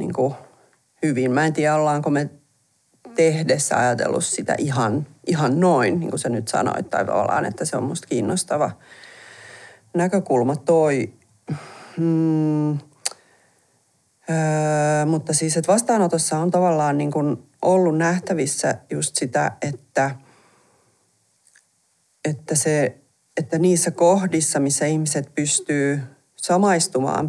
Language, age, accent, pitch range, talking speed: Finnish, 40-59, native, 135-165 Hz, 110 wpm